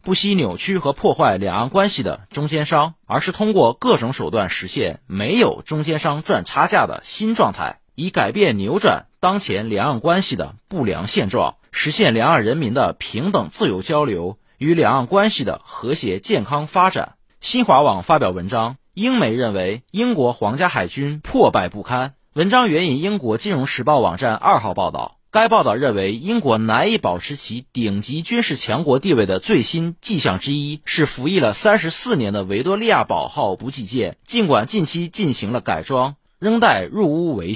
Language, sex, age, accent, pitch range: Chinese, male, 30-49, native, 130-205 Hz